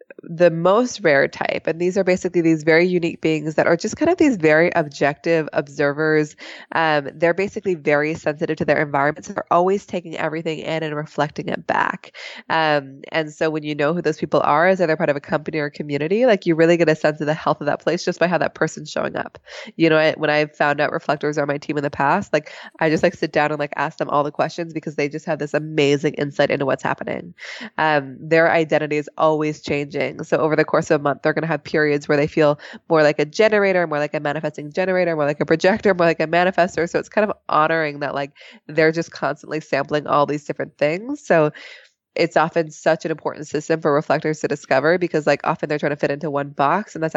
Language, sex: English, female